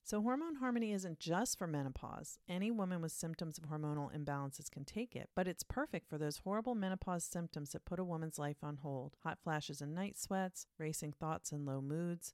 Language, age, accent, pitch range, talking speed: English, 40-59, American, 150-190 Hz, 205 wpm